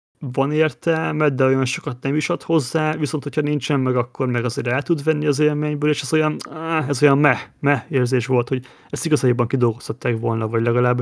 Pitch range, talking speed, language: 120-145 Hz, 195 wpm, Hungarian